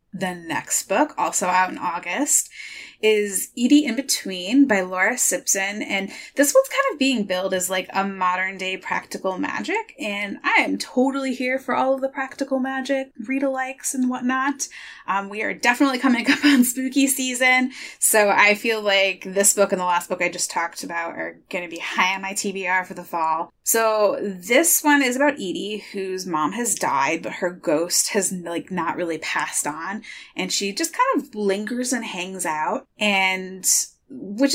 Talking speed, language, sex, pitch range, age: 180 wpm, English, female, 185-270 Hz, 20-39